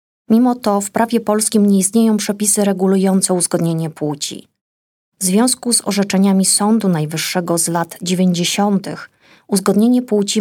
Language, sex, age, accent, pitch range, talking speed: Polish, female, 20-39, native, 175-210 Hz, 125 wpm